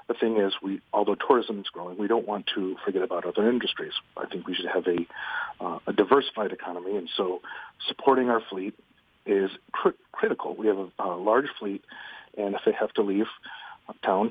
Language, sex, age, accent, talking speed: English, male, 40-59, American, 200 wpm